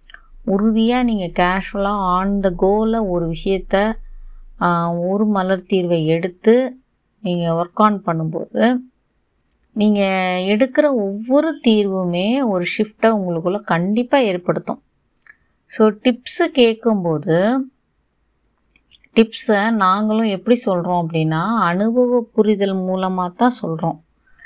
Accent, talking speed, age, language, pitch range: native, 95 wpm, 30-49, Tamil, 180-235 Hz